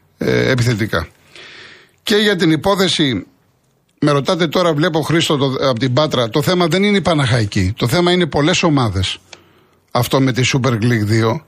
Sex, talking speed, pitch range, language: male, 160 wpm, 125-175 Hz, Greek